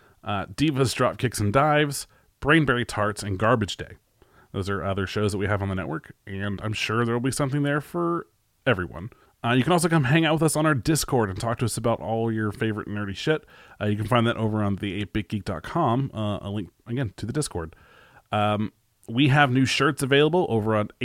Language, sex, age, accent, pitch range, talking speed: English, male, 30-49, American, 105-135 Hz, 215 wpm